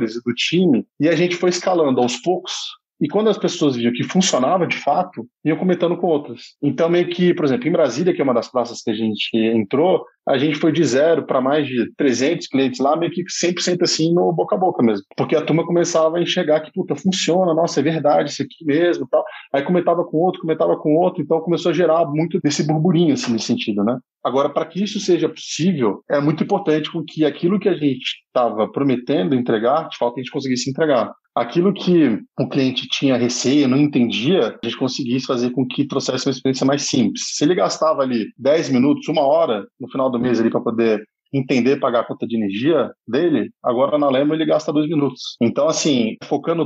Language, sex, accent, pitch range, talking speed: Portuguese, male, Brazilian, 125-165 Hz, 215 wpm